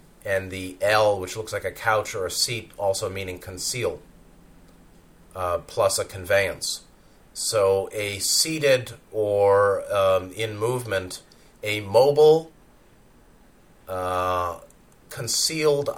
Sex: male